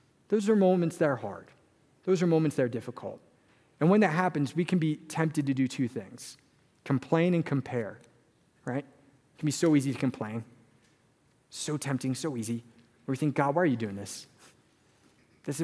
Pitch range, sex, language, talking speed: 125-160 Hz, male, English, 190 wpm